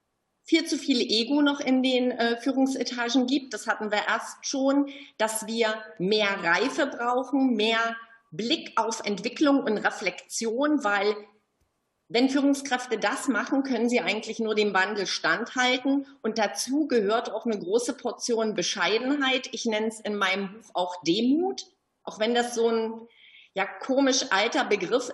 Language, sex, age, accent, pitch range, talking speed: German, female, 40-59, German, 205-250 Hz, 145 wpm